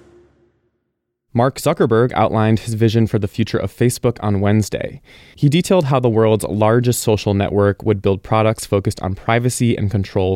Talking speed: 160 wpm